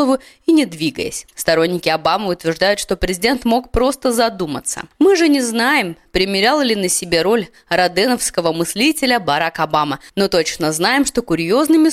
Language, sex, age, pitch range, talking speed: Russian, female, 20-39, 175-255 Hz, 145 wpm